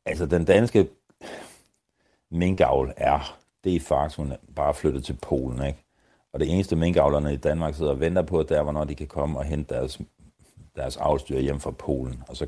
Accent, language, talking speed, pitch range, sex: native, Danish, 195 wpm, 70-85 Hz, male